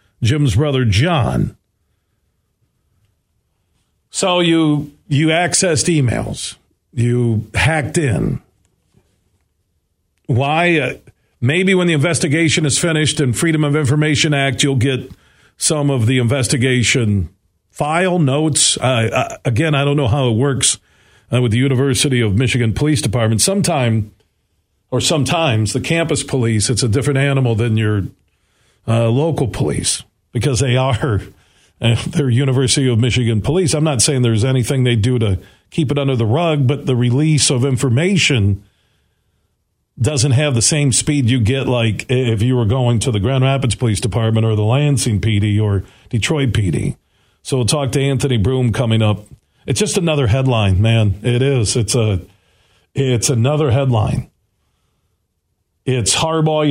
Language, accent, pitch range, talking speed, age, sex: English, American, 110-145 Hz, 145 wpm, 50-69, male